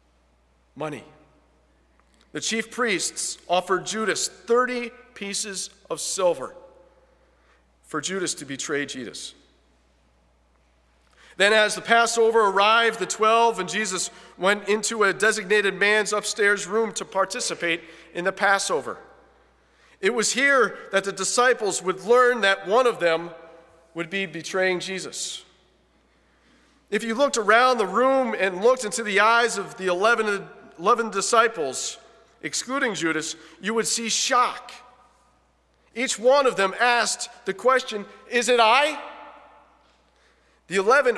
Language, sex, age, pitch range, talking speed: English, male, 40-59, 165-230 Hz, 130 wpm